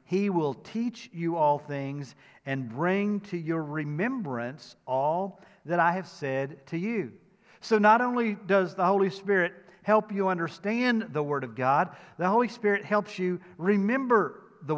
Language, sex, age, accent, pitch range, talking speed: English, male, 50-69, American, 145-190 Hz, 160 wpm